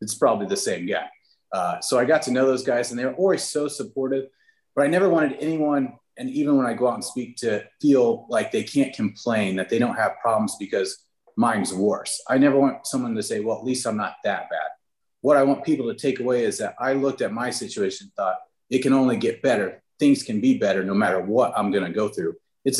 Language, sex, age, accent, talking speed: English, male, 30-49, American, 245 wpm